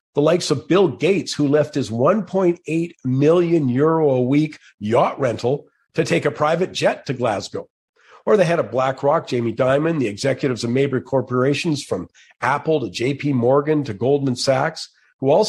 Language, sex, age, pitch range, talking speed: English, male, 50-69, 130-160 Hz, 170 wpm